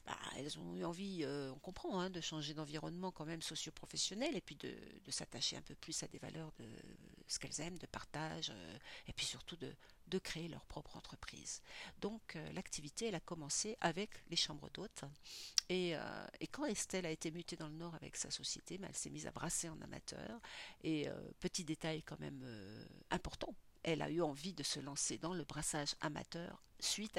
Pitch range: 155-180 Hz